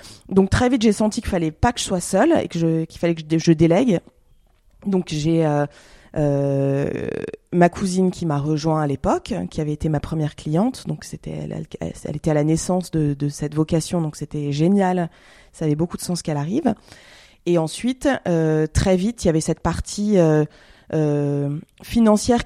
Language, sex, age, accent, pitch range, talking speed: French, female, 20-39, French, 155-200 Hz, 190 wpm